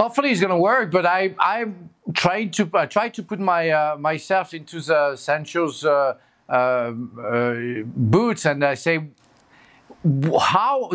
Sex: male